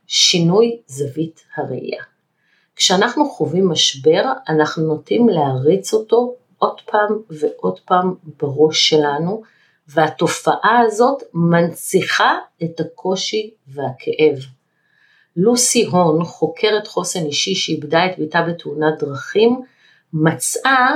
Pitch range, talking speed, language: 155-215 Hz, 95 wpm, Hebrew